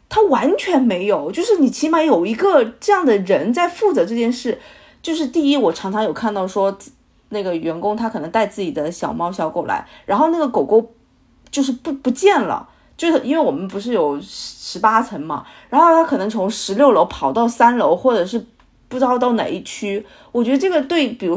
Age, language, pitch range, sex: 30-49, Chinese, 210-285 Hz, female